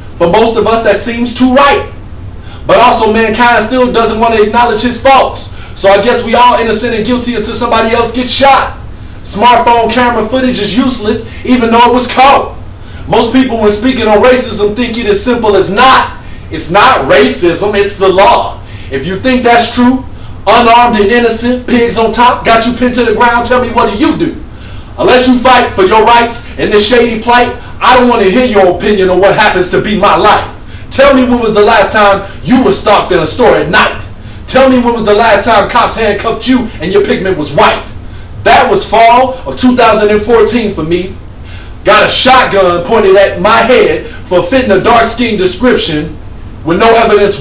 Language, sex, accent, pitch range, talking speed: English, male, American, 205-245 Hz, 200 wpm